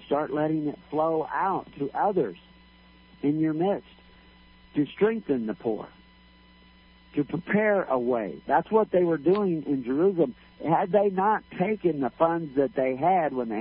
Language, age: English, 60-79